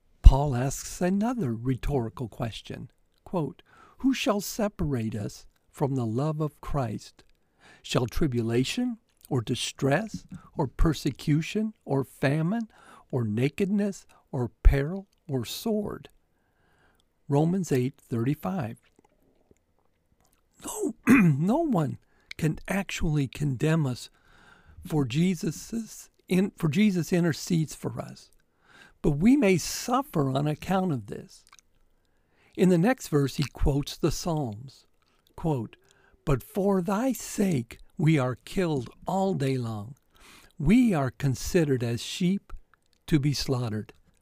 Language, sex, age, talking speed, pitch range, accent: English, male, 50-69, 110 wpm, 125-185 Hz, American